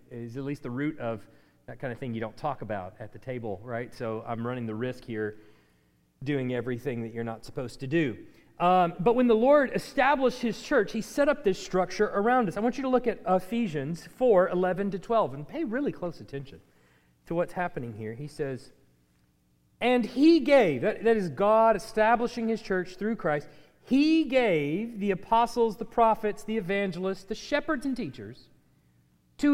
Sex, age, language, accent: male, 40-59, English, American